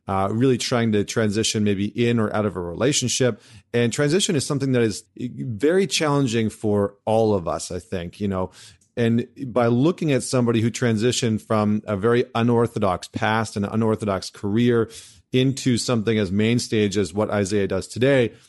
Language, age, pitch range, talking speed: English, 40-59, 105-130 Hz, 170 wpm